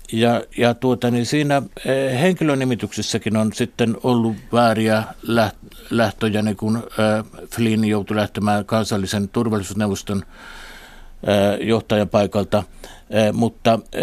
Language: Finnish